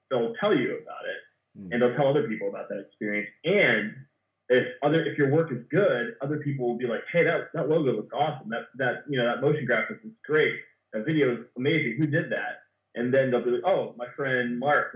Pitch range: 120-150 Hz